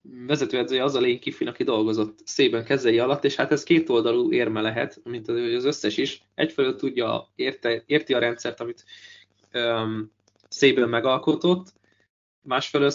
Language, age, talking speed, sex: Hungarian, 20-39, 145 wpm, male